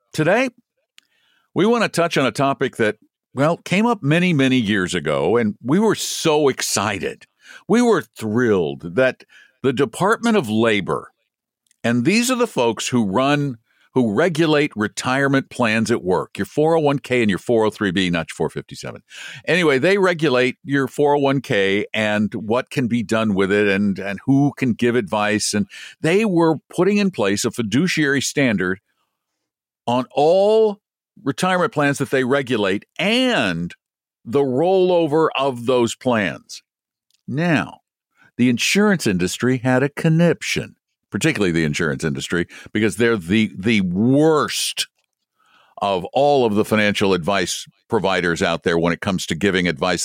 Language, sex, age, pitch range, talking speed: English, male, 60-79, 105-160 Hz, 145 wpm